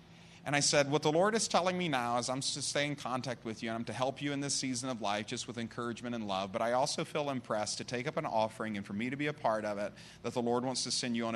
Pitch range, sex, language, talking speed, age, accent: 115-155 Hz, male, English, 315 wpm, 30-49, American